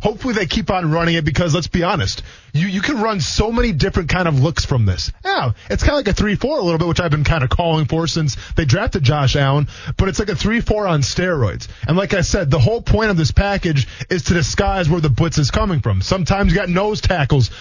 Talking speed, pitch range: 255 wpm, 130-195 Hz